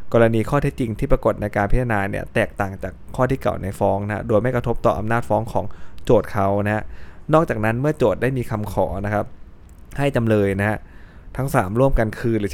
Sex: male